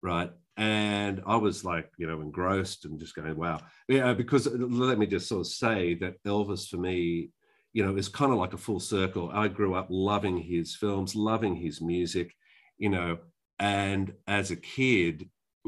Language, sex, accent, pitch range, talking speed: English, male, Australian, 90-115 Hz, 185 wpm